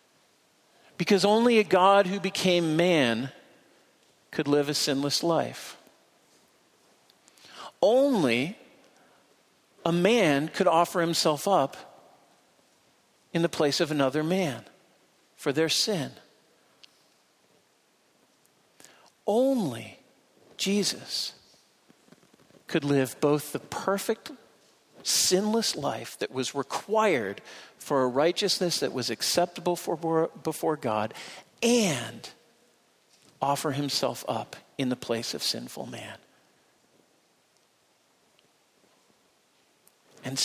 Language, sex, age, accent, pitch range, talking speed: English, male, 50-69, American, 145-200 Hz, 90 wpm